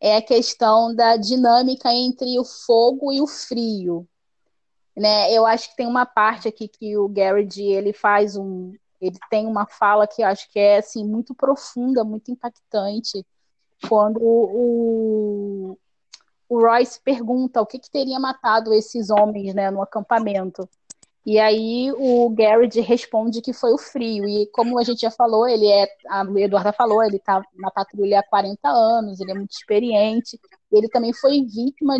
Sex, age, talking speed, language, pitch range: female, 20-39, 170 wpm, Portuguese, 210-255 Hz